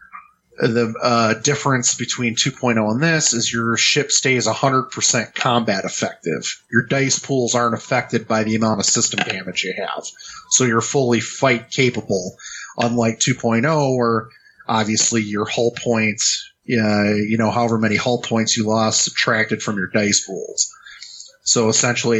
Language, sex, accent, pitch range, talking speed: English, male, American, 110-135 Hz, 150 wpm